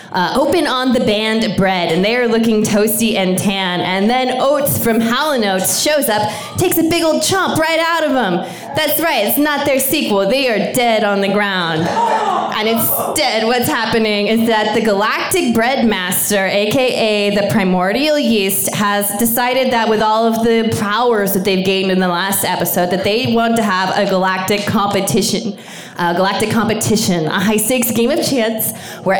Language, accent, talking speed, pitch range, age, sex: English, American, 180 wpm, 195-255 Hz, 20-39, female